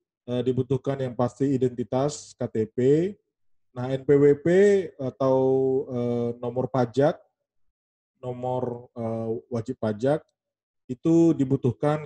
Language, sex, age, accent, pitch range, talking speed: Indonesian, male, 20-39, native, 110-135 Hz, 75 wpm